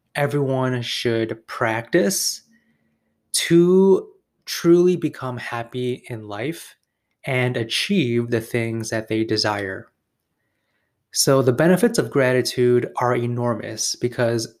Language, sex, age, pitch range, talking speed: English, male, 20-39, 115-155 Hz, 100 wpm